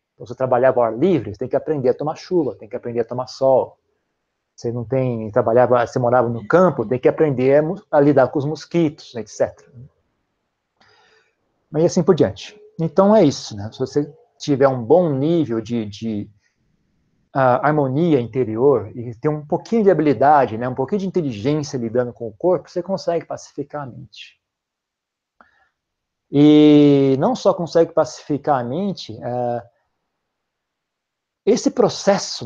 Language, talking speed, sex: Portuguese, 160 wpm, male